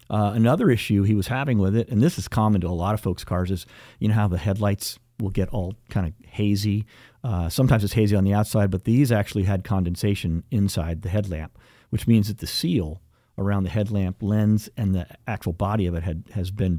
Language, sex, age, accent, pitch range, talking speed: English, male, 50-69, American, 95-115 Hz, 225 wpm